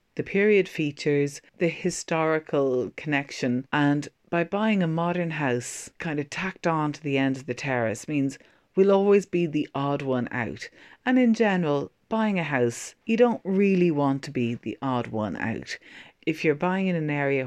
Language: English